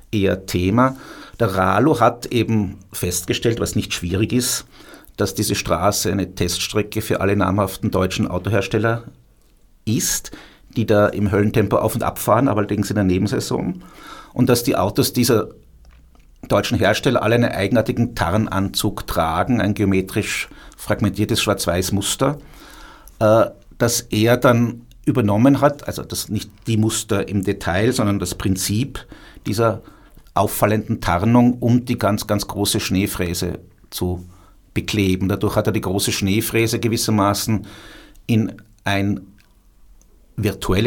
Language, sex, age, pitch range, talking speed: German, male, 50-69, 100-120 Hz, 125 wpm